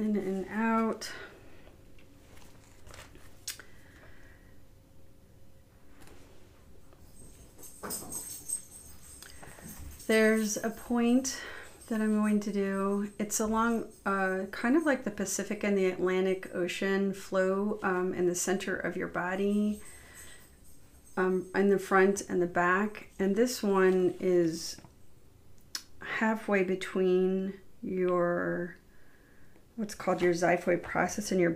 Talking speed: 100 wpm